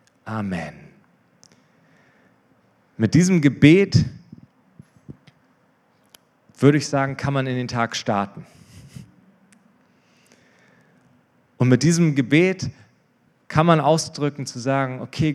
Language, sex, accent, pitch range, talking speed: German, male, German, 115-140 Hz, 90 wpm